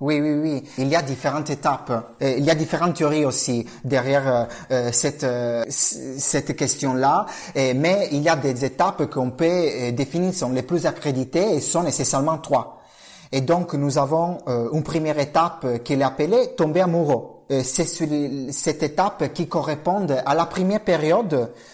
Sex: male